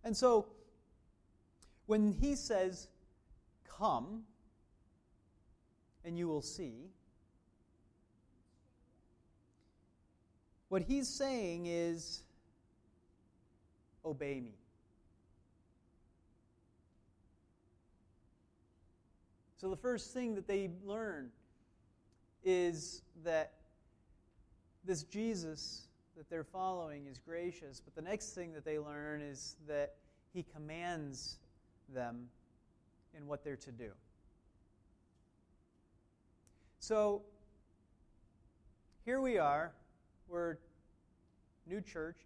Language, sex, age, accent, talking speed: English, male, 30-49, American, 80 wpm